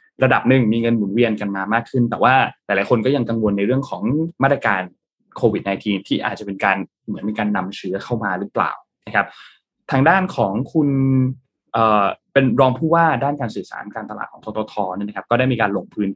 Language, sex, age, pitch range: Thai, male, 20-39, 105-135 Hz